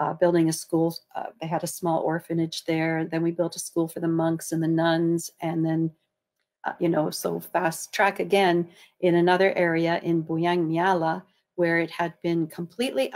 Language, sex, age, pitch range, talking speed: English, female, 50-69, 165-185 Hz, 190 wpm